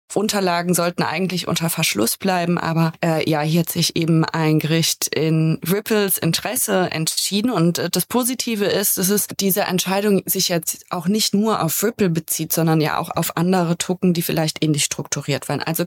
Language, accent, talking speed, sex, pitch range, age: German, German, 180 wpm, female, 165-200 Hz, 20-39